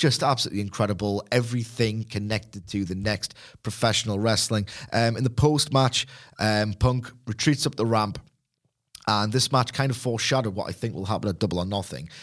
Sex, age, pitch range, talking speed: male, 30-49, 100-135 Hz, 165 wpm